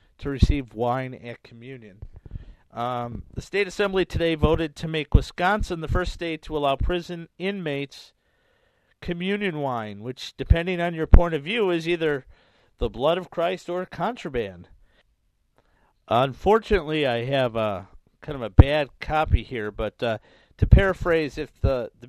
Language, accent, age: English, American, 50-69